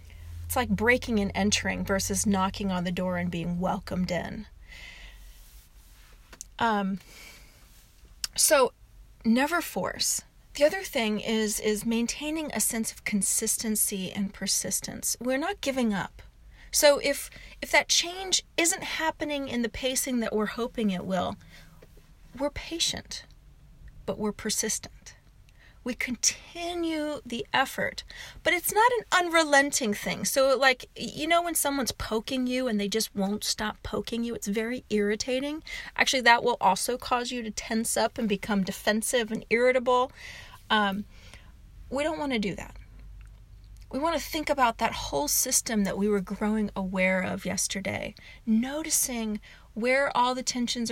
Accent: American